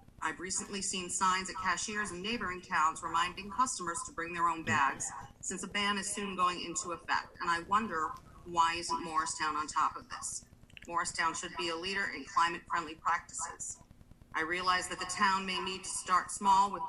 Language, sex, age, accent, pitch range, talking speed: English, female, 40-59, American, 170-200 Hz, 190 wpm